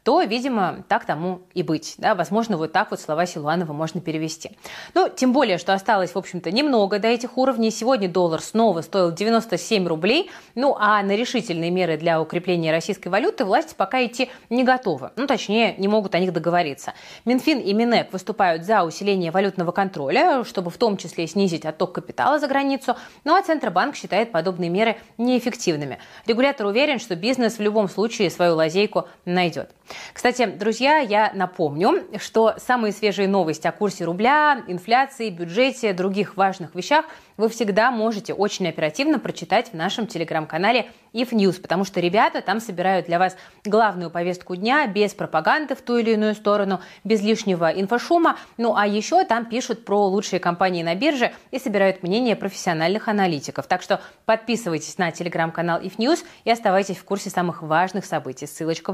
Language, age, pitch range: Russian, 20-39, 175-230 Hz